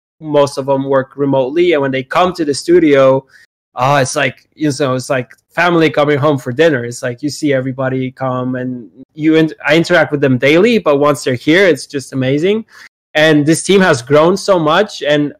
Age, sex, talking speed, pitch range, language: 20-39, male, 215 wpm, 135-155 Hz, English